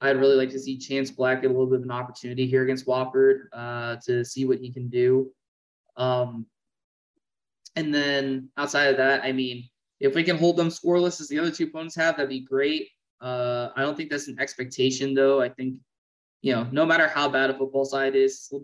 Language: English